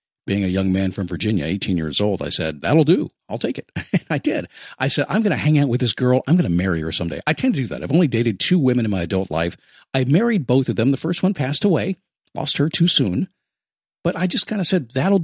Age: 50-69